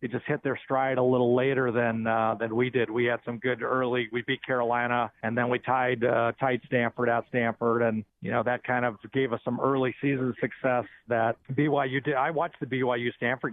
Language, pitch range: English, 115-135 Hz